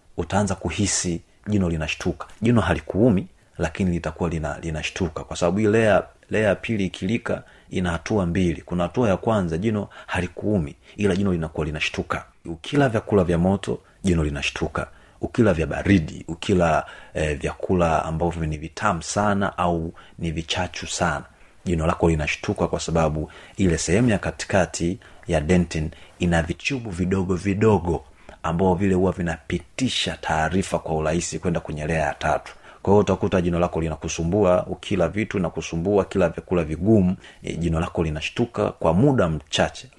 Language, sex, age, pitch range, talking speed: Swahili, male, 30-49, 80-95 Hz, 140 wpm